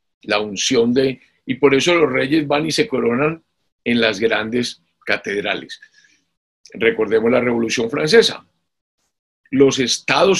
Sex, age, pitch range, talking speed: male, 50-69, 115-170 Hz, 125 wpm